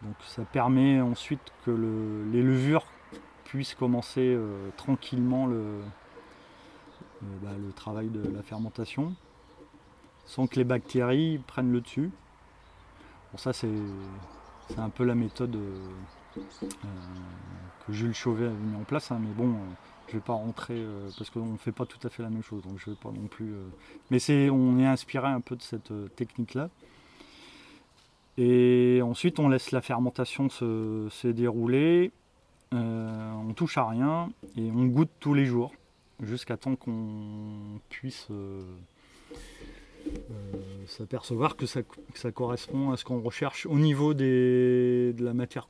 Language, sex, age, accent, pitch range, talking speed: French, male, 30-49, French, 110-130 Hz, 165 wpm